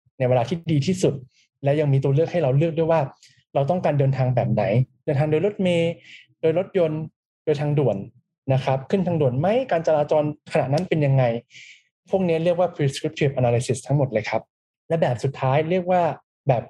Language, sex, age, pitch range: Thai, male, 20-39, 130-165 Hz